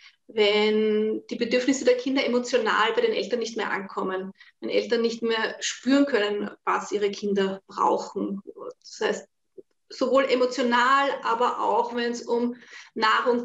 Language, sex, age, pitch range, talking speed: German, female, 30-49, 215-275 Hz, 145 wpm